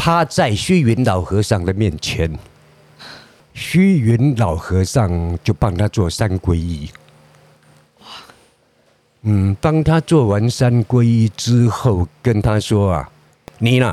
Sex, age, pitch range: male, 50-69, 95-130 Hz